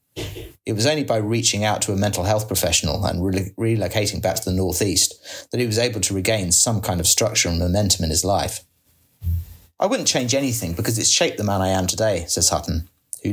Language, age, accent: English, 30-49, British